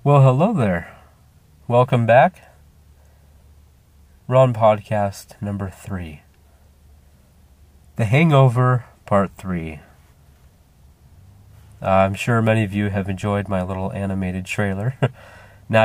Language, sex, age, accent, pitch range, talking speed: English, male, 30-49, American, 85-120 Hz, 100 wpm